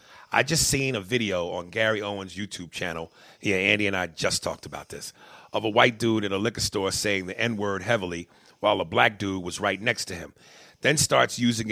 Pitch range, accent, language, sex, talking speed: 100-120 Hz, American, English, male, 215 wpm